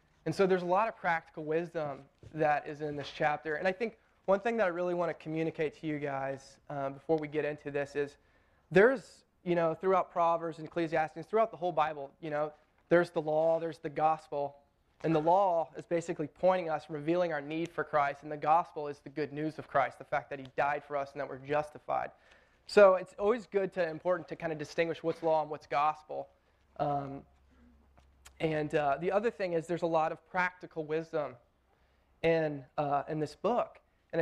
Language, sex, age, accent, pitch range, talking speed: English, male, 20-39, American, 145-170 Hz, 210 wpm